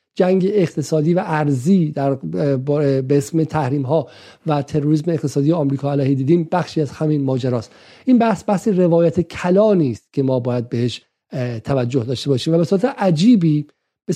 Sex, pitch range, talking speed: male, 140-165 Hz, 155 wpm